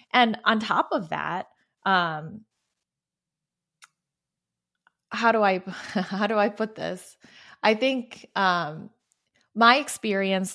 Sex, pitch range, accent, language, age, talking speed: female, 170-215 Hz, American, English, 20-39, 110 wpm